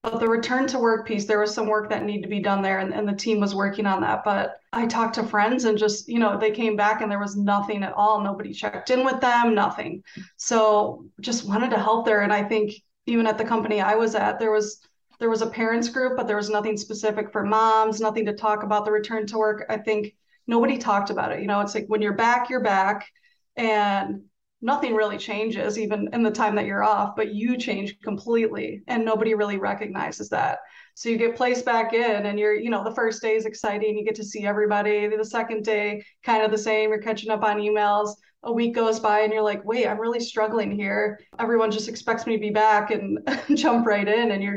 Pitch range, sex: 210-225 Hz, female